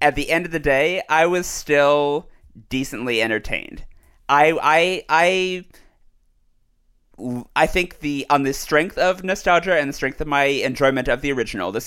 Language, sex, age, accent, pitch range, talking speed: English, male, 30-49, American, 115-150 Hz, 160 wpm